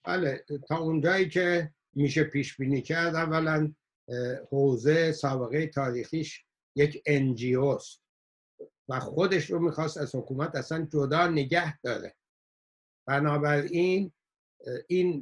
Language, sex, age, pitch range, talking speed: Persian, male, 60-79, 135-160 Hz, 105 wpm